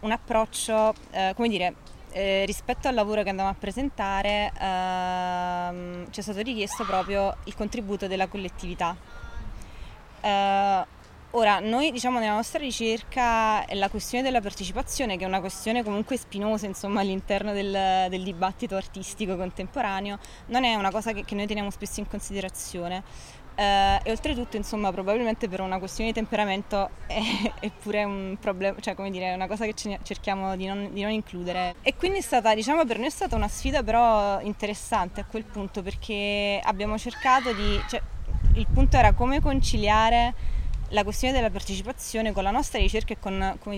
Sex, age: female, 20-39